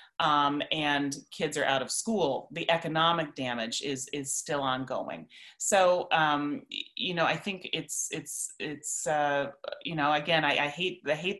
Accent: American